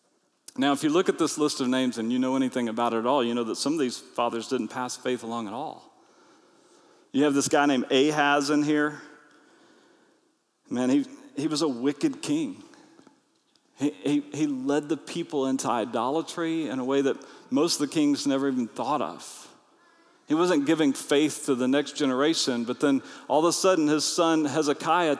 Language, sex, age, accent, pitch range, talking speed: English, male, 40-59, American, 135-195 Hz, 195 wpm